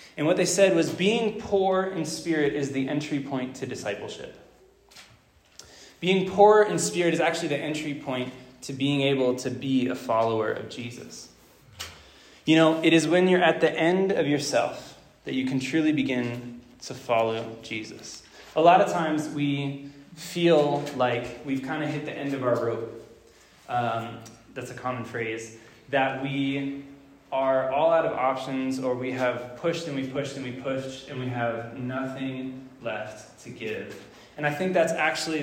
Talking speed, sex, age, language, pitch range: 175 wpm, male, 20-39, English, 125-160 Hz